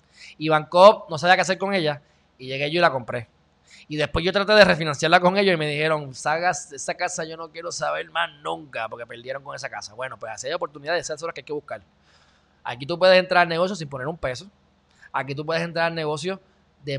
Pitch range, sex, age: 125-170 Hz, male, 20-39